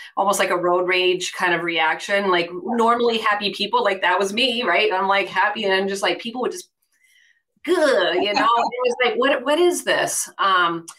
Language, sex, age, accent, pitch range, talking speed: English, female, 30-49, American, 180-235 Hz, 215 wpm